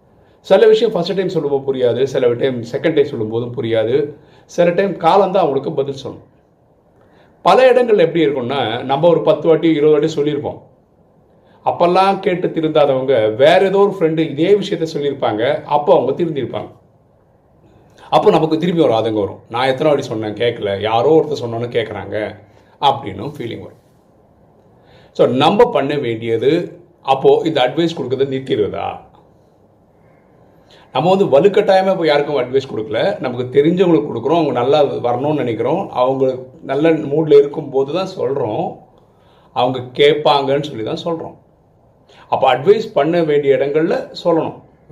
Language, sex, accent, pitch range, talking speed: Tamil, male, native, 130-195 Hz, 135 wpm